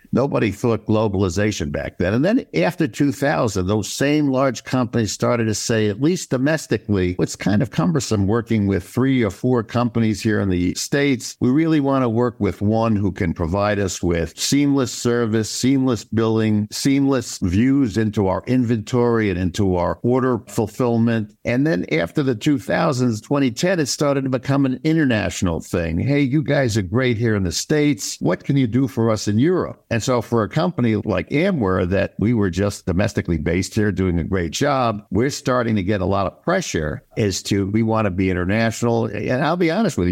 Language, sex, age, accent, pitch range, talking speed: English, male, 60-79, American, 95-125 Hz, 190 wpm